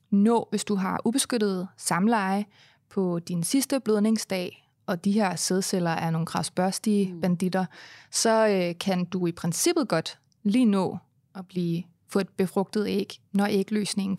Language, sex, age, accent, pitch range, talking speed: Danish, female, 30-49, native, 185-225 Hz, 150 wpm